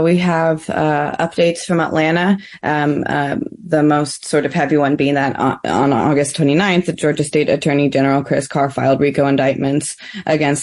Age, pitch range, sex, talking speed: 20-39, 140-155 Hz, female, 170 wpm